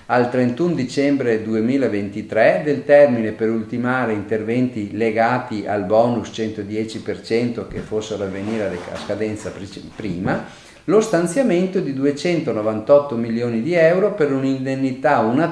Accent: native